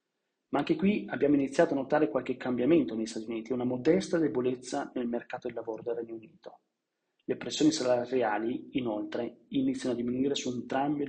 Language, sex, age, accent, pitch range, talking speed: Italian, male, 30-49, native, 120-145 Hz, 170 wpm